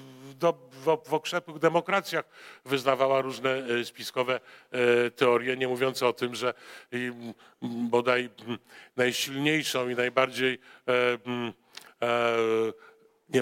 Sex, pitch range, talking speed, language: male, 120-150 Hz, 75 wpm, Polish